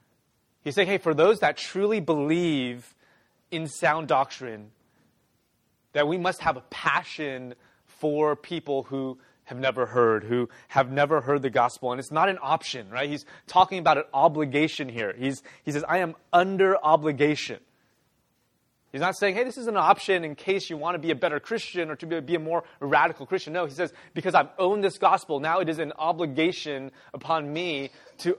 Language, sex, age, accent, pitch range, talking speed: English, male, 20-39, American, 145-175 Hz, 190 wpm